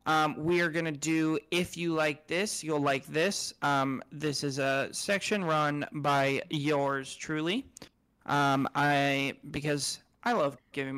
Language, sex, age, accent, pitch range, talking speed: English, male, 30-49, American, 145-170 Hz, 155 wpm